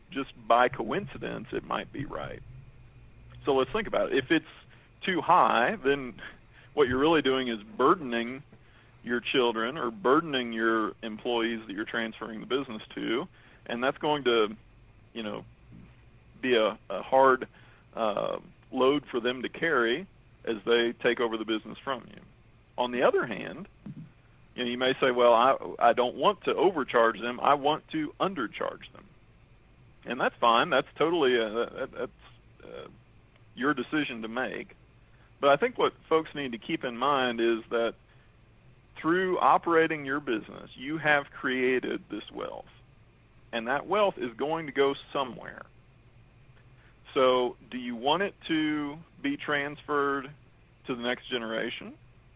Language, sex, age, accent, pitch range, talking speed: English, male, 40-59, American, 115-140 Hz, 155 wpm